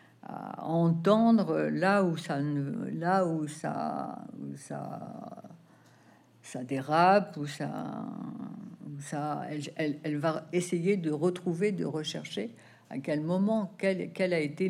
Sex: female